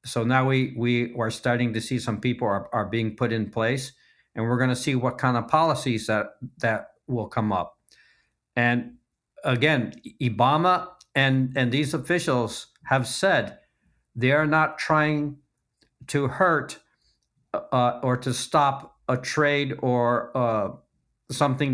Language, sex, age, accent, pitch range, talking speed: English, male, 50-69, American, 115-140 Hz, 150 wpm